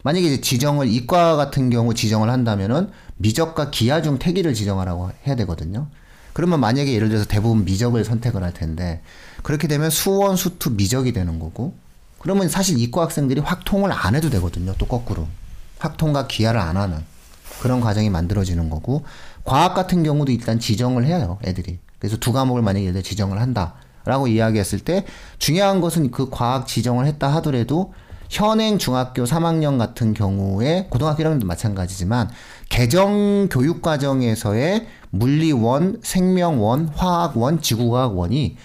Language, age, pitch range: Korean, 40-59, 105-150 Hz